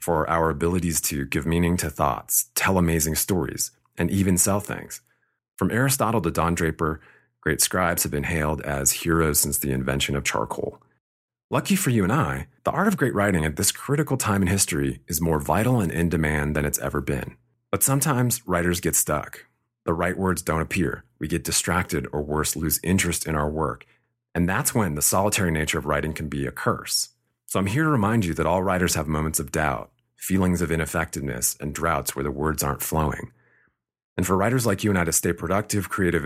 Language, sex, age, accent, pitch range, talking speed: English, male, 30-49, American, 75-100 Hz, 205 wpm